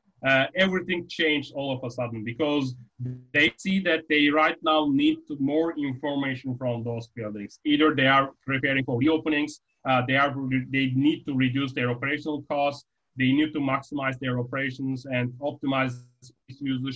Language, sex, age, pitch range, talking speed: English, male, 30-49, 125-150 Hz, 150 wpm